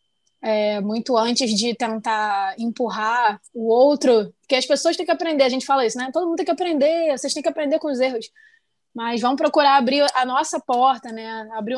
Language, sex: Portuguese, female